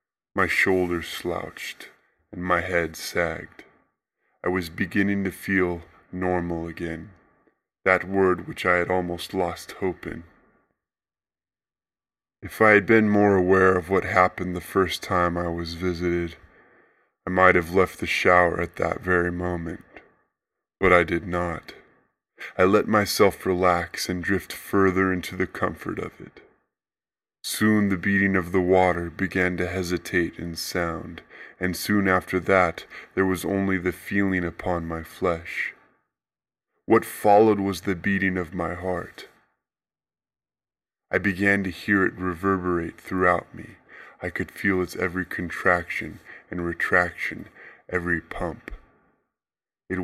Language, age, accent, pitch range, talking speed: English, 20-39, American, 85-95 Hz, 135 wpm